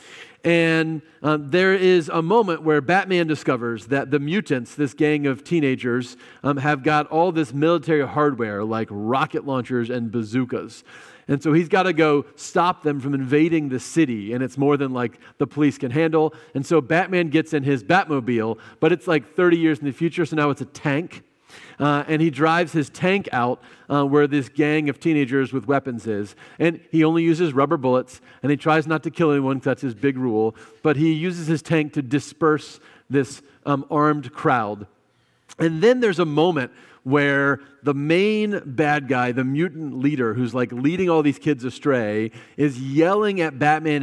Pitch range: 135-165 Hz